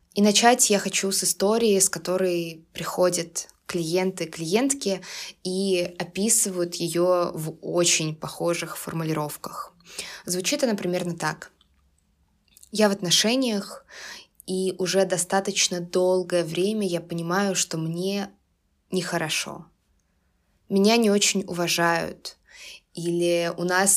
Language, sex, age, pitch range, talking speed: Russian, female, 20-39, 165-190 Hz, 105 wpm